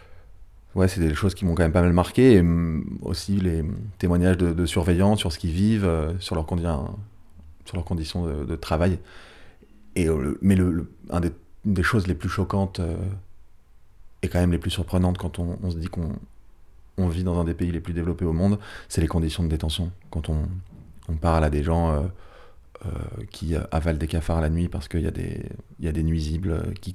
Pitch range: 80-95 Hz